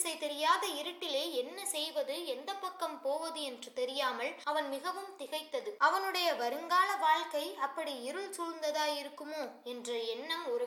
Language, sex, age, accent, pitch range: Tamil, female, 20-39, native, 255-335 Hz